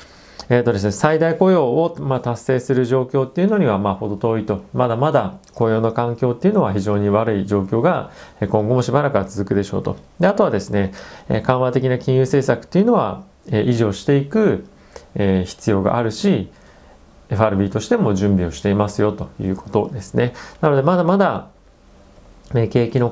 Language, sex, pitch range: Japanese, male, 100-130 Hz